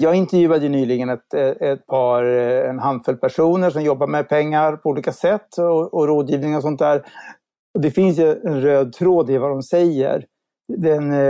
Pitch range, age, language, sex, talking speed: 135-175 Hz, 60-79, Swedish, male, 185 wpm